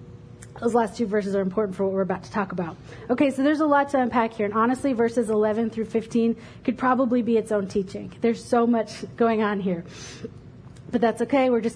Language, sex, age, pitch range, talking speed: English, female, 30-49, 195-260 Hz, 225 wpm